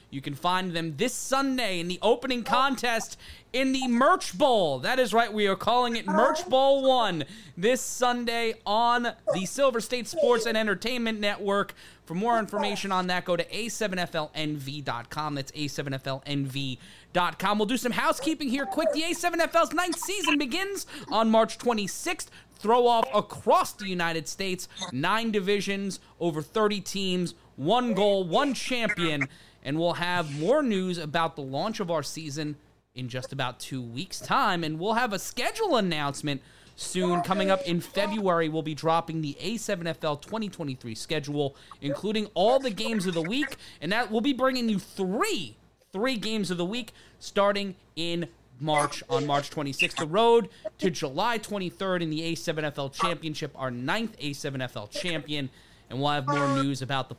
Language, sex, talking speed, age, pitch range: English, male, 160 wpm, 30-49, 150-230 Hz